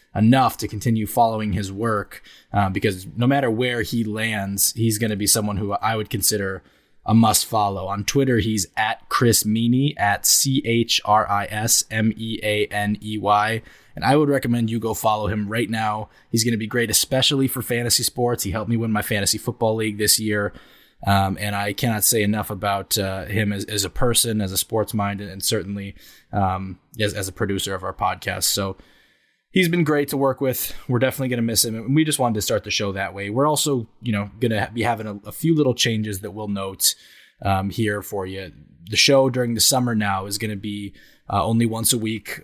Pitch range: 100-115 Hz